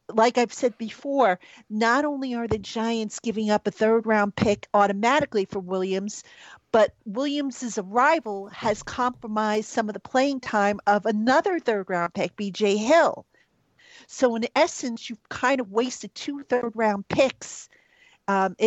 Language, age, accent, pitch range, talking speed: English, 50-69, American, 205-260 Hz, 140 wpm